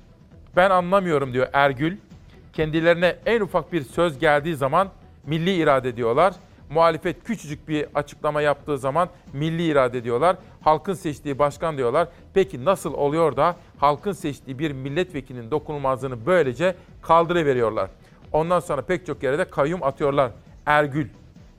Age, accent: 50-69, native